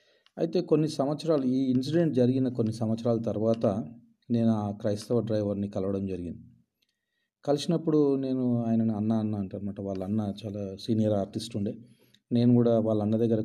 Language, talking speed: Telugu, 145 wpm